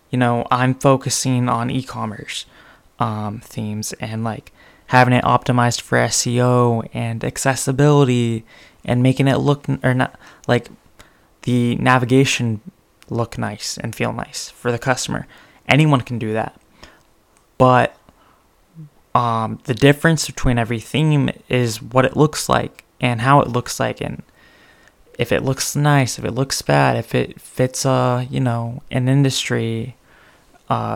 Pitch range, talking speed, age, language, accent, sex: 115-130 Hz, 145 wpm, 20-39, English, American, male